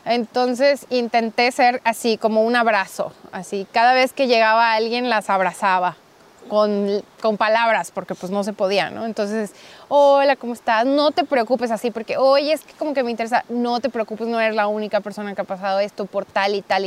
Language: Spanish